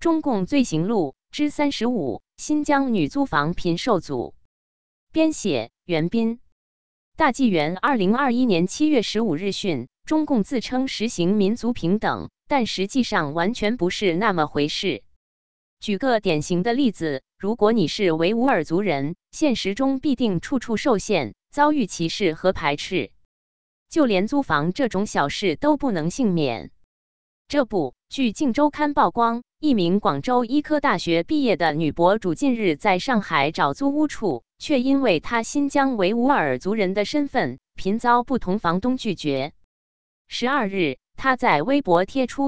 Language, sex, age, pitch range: Chinese, female, 20-39, 170-265 Hz